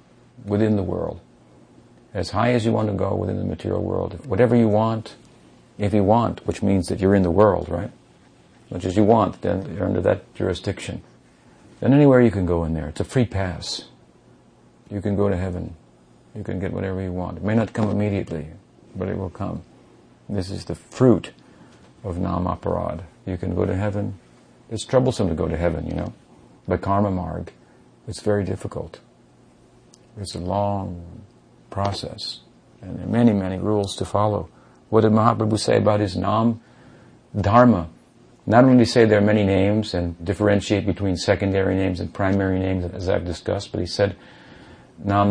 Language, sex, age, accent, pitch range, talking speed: English, male, 50-69, American, 90-110 Hz, 180 wpm